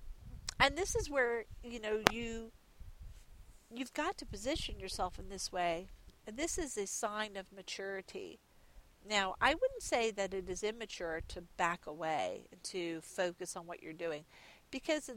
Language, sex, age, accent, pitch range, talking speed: English, female, 50-69, American, 175-240 Hz, 160 wpm